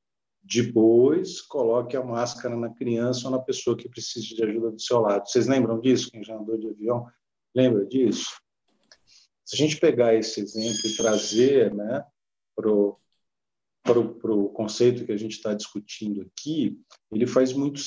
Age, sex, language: 50-69, male, Portuguese